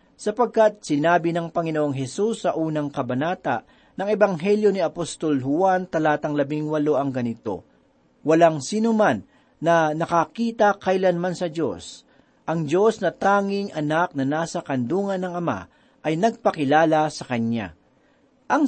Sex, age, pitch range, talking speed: male, 40-59, 145-205 Hz, 130 wpm